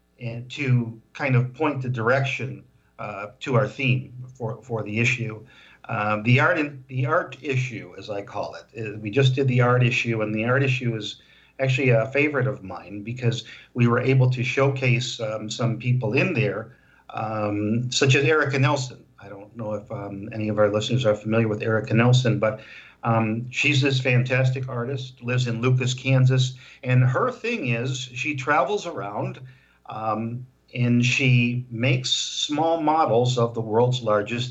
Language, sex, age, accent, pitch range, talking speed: English, male, 50-69, American, 115-130 Hz, 170 wpm